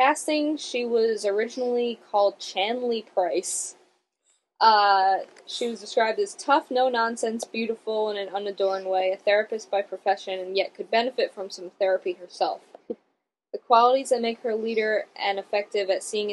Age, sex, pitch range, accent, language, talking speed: 10-29, female, 190-240 Hz, American, English, 155 wpm